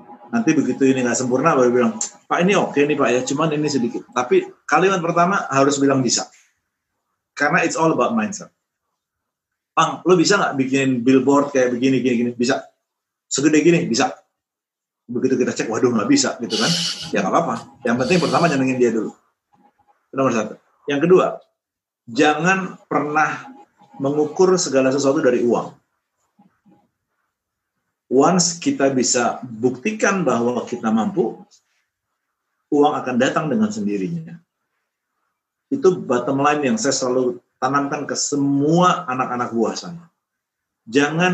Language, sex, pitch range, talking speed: Indonesian, male, 125-170 Hz, 140 wpm